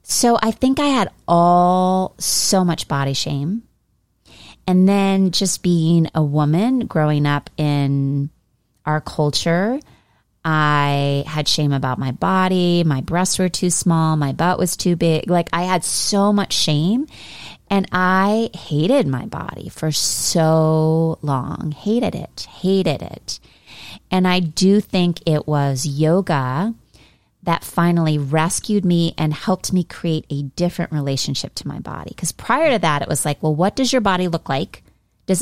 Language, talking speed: English, 155 wpm